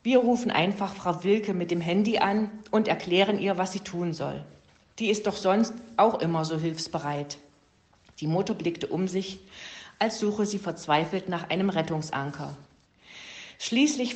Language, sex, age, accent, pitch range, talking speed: German, female, 50-69, German, 160-200 Hz, 155 wpm